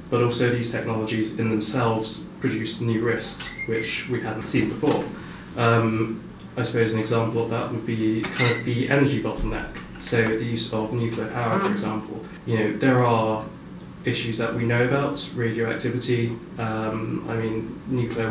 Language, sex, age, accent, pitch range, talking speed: English, male, 20-39, British, 110-120 Hz, 165 wpm